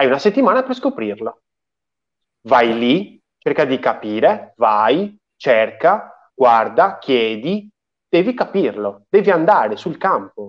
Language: Italian